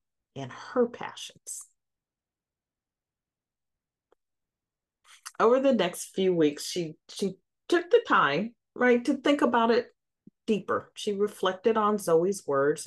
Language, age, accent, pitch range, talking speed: English, 40-59, American, 155-230 Hz, 110 wpm